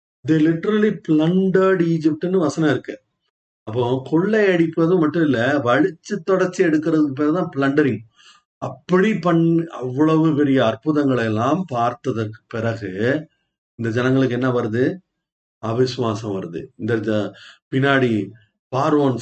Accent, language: native, Tamil